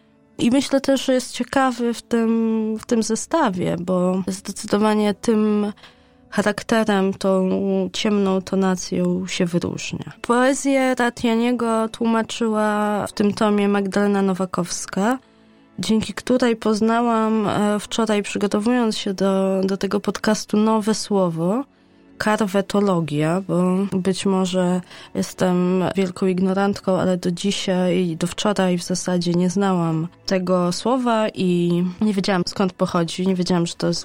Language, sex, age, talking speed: Polish, female, 20-39, 120 wpm